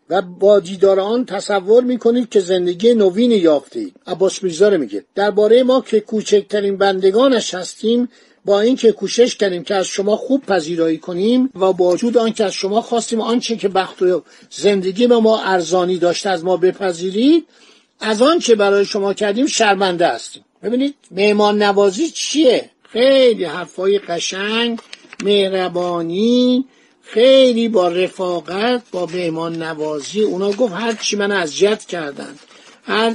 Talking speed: 140 wpm